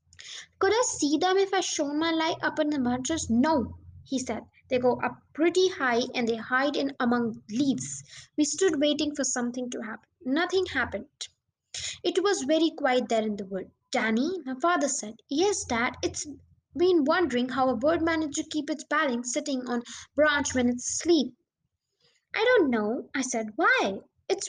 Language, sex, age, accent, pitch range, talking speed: English, female, 20-39, Indian, 250-335 Hz, 180 wpm